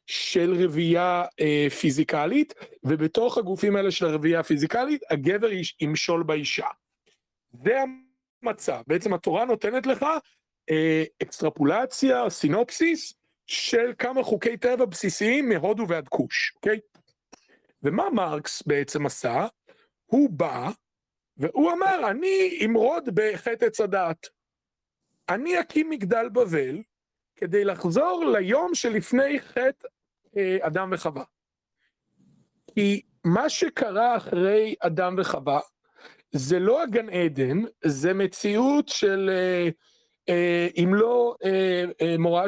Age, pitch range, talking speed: 40-59, 175-255 Hz, 100 wpm